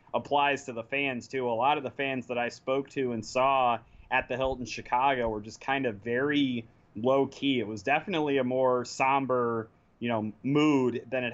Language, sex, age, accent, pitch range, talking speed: English, male, 20-39, American, 120-135 Hz, 200 wpm